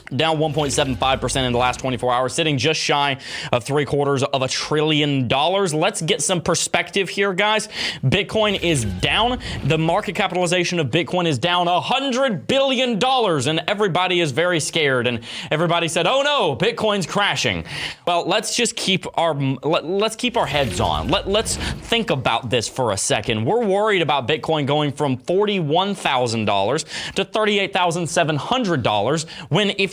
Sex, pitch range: male, 150-210 Hz